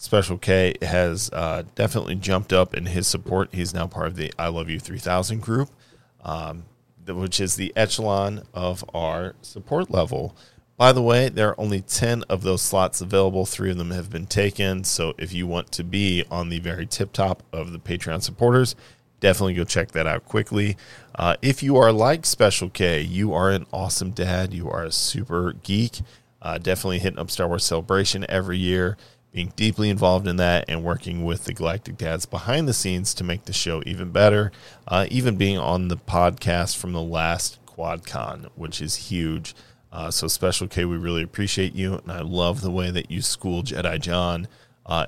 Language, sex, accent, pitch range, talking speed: English, male, American, 85-105 Hz, 195 wpm